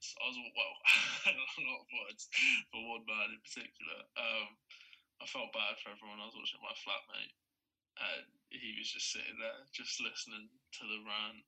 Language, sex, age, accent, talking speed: English, male, 20-39, British, 185 wpm